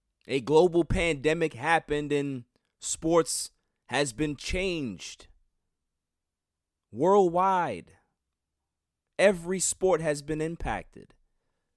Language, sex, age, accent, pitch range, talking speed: English, male, 30-49, American, 100-150 Hz, 75 wpm